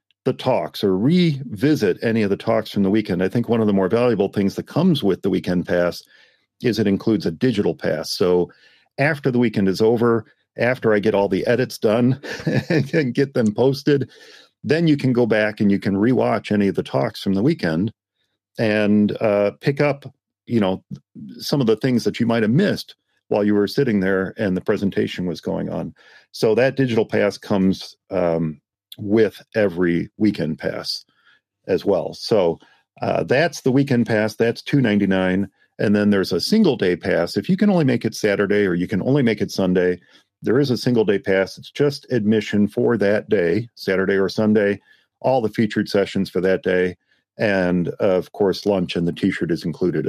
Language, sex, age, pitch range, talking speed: English, male, 40-59, 95-120 Hz, 195 wpm